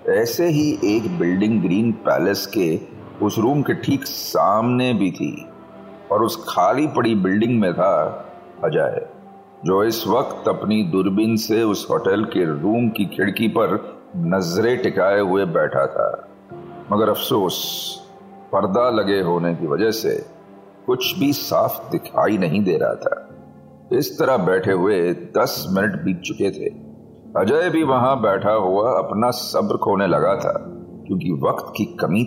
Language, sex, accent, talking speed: Hindi, male, native, 145 wpm